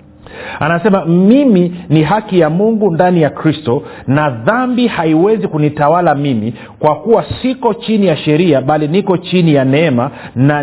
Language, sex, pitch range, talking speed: Swahili, male, 135-185 Hz, 145 wpm